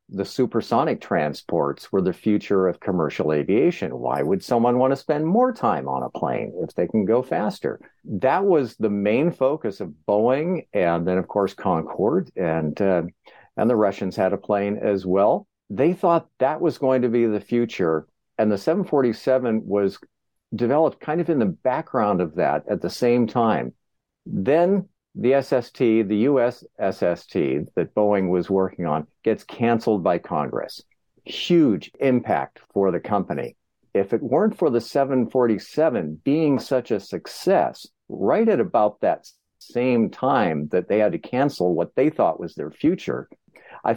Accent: American